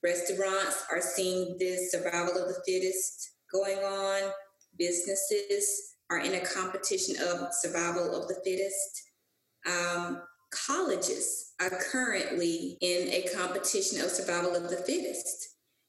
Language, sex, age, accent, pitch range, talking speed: English, female, 20-39, American, 175-285 Hz, 120 wpm